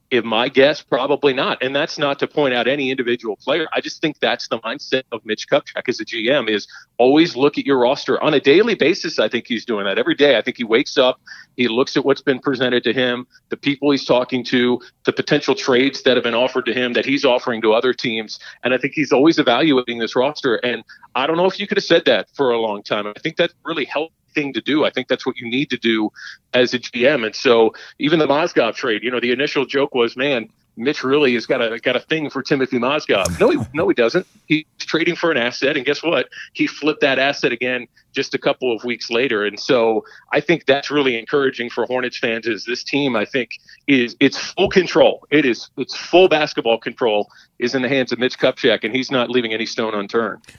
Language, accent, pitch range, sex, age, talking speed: English, American, 120-145 Hz, male, 40-59, 240 wpm